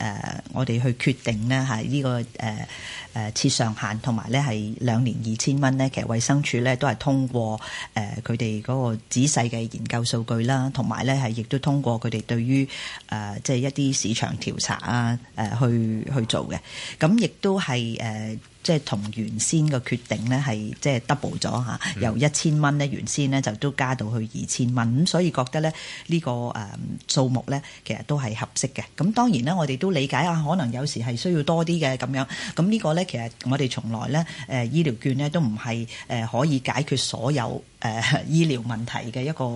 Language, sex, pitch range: Chinese, female, 115-140 Hz